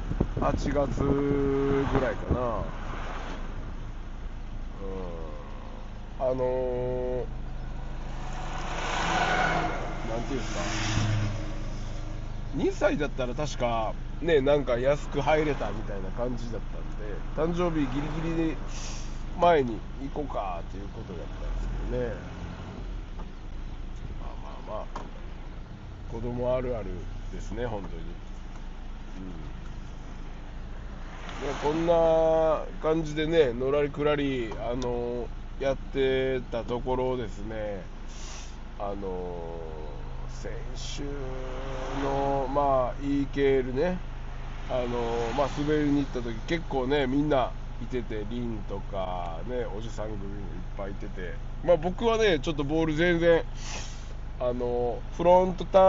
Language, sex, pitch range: Japanese, male, 105-140 Hz